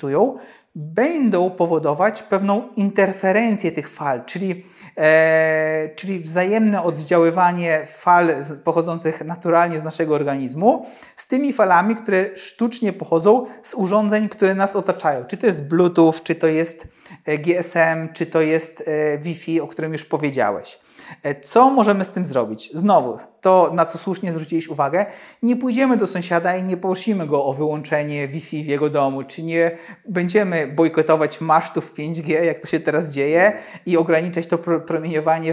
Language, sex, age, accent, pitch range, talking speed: Polish, male, 40-59, native, 155-190 Hz, 140 wpm